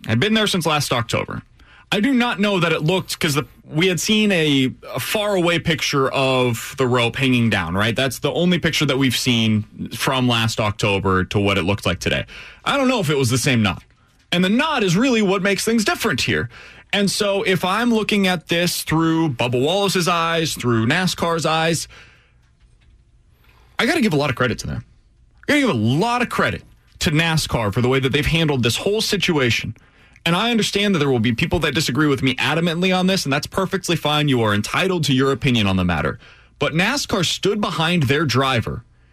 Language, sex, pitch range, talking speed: English, male, 120-175 Hz, 215 wpm